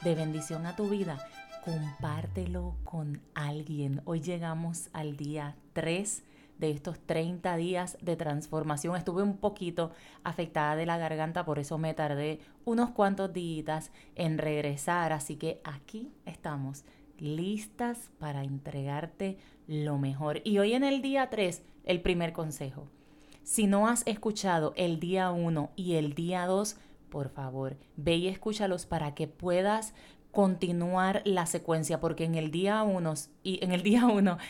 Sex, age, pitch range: female, 30-49, 155-200 Hz